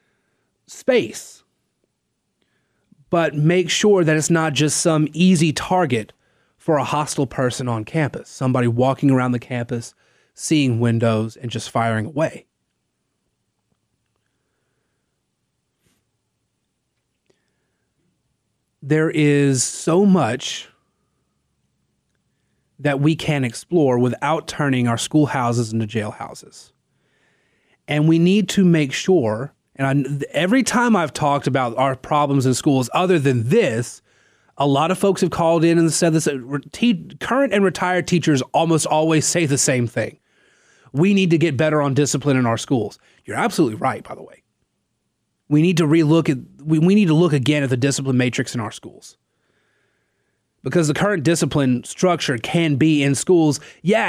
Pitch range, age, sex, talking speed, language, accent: 125-165 Hz, 30-49, male, 140 wpm, English, American